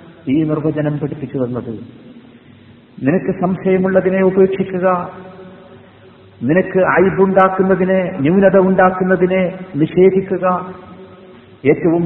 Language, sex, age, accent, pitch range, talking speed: Malayalam, male, 50-69, native, 155-185 Hz, 65 wpm